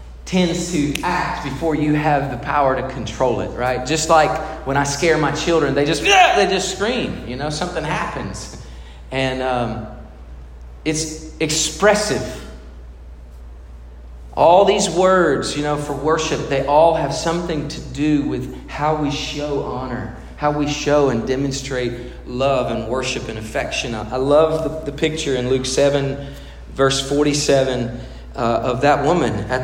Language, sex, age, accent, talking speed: English, male, 40-59, American, 150 wpm